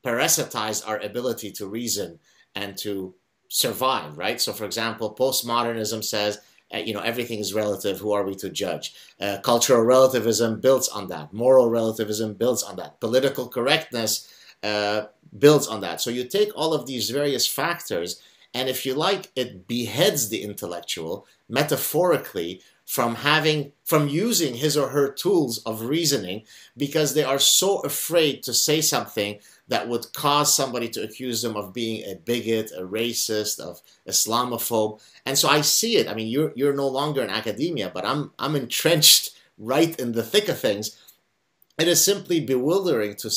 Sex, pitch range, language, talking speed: male, 110-145 Hz, English, 165 wpm